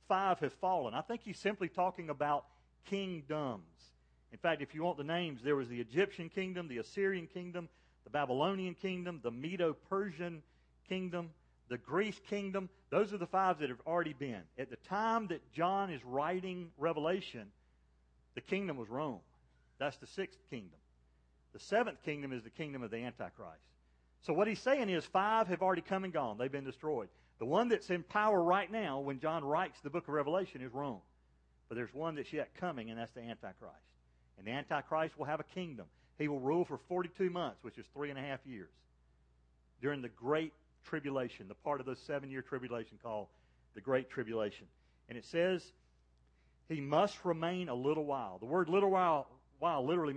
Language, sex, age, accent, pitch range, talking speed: English, male, 40-59, American, 110-180 Hz, 185 wpm